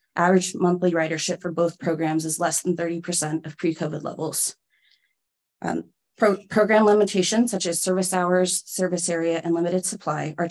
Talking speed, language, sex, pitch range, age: 155 wpm, English, female, 165-190 Hz, 20-39